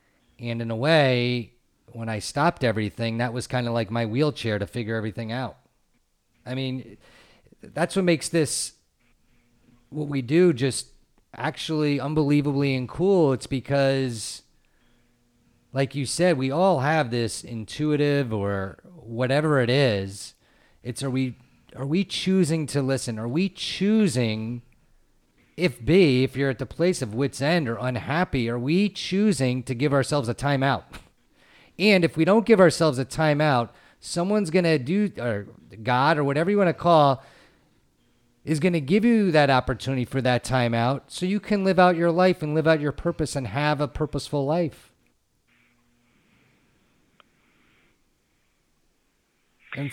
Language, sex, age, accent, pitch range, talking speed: English, male, 40-59, American, 120-165 Hz, 155 wpm